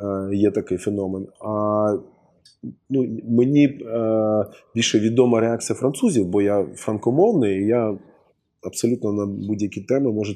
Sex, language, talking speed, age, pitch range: male, Ukrainian, 120 wpm, 20-39, 100-125 Hz